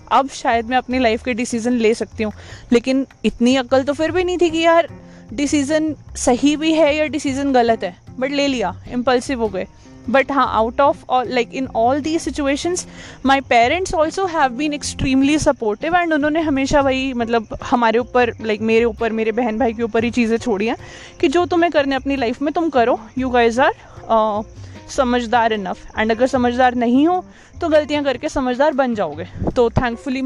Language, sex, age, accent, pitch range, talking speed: Hindi, female, 20-39, native, 230-305 Hz, 190 wpm